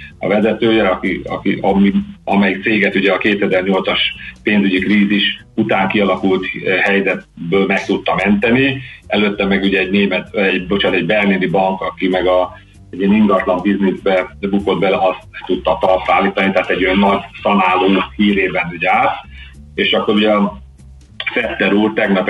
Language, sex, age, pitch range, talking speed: Hungarian, male, 40-59, 90-105 Hz, 145 wpm